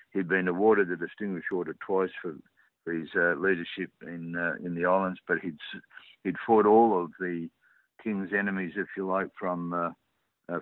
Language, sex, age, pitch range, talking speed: English, male, 60-79, 85-100 Hz, 170 wpm